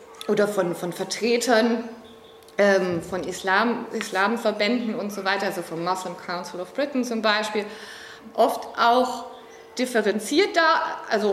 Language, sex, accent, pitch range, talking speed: German, female, German, 195-240 Hz, 125 wpm